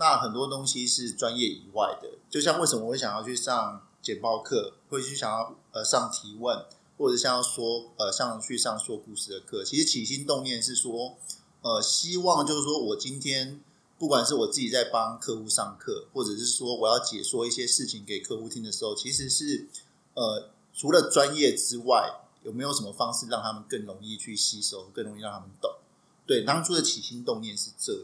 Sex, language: male, Chinese